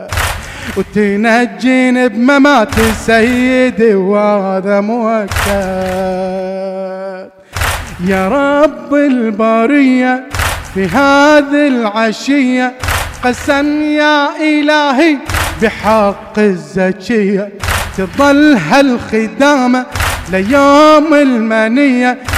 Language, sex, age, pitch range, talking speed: Arabic, male, 30-49, 200-285 Hz, 55 wpm